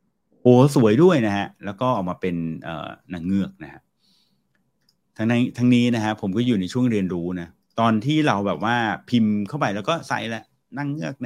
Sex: male